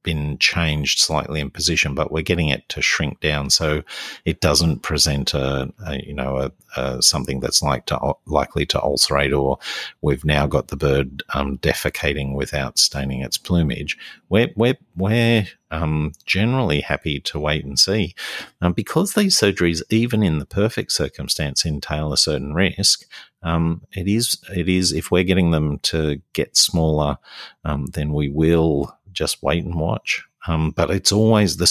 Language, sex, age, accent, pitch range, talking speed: English, male, 50-69, Australian, 75-90 Hz, 170 wpm